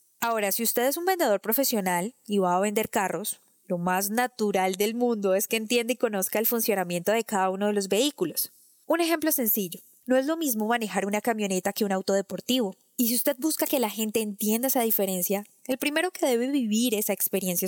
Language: Spanish